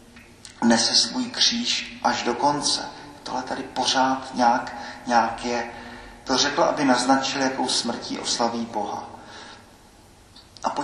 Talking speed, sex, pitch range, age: 115 wpm, male, 115-130 Hz, 40-59